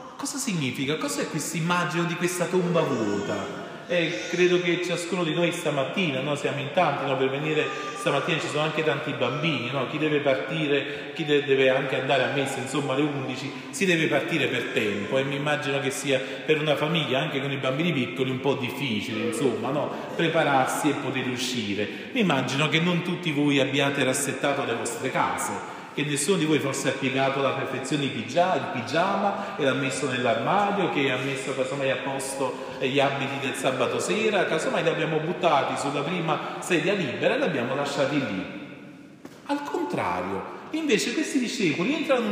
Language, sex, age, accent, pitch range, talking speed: Italian, male, 40-59, native, 135-175 Hz, 180 wpm